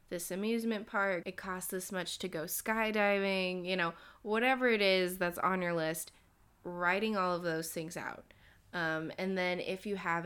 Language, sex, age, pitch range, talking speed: English, female, 20-39, 170-195 Hz, 180 wpm